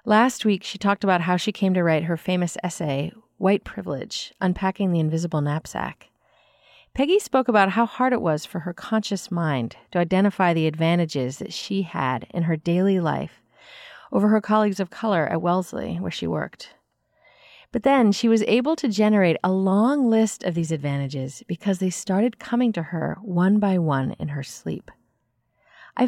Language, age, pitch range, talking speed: English, 30-49, 165-225 Hz, 175 wpm